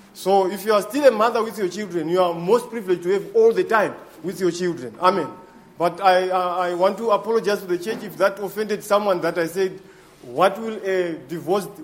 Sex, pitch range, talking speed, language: male, 160-205 Hz, 225 wpm, English